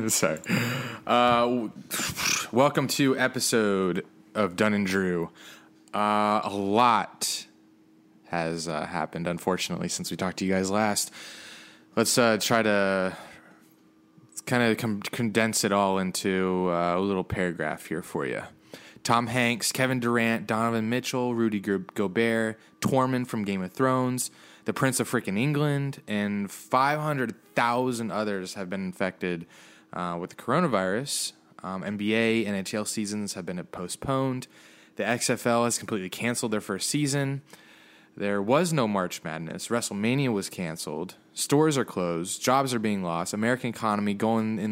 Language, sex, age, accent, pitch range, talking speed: English, male, 20-39, American, 100-120 Hz, 140 wpm